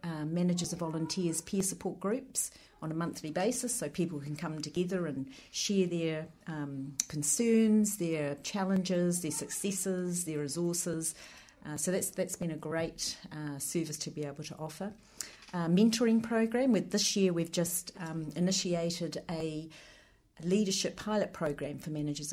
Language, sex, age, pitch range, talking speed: English, female, 50-69, 150-185 Hz, 155 wpm